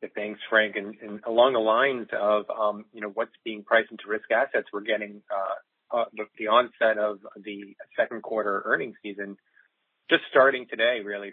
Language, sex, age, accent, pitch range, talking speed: English, male, 30-49, American, 100-115 Hz, 180 wpm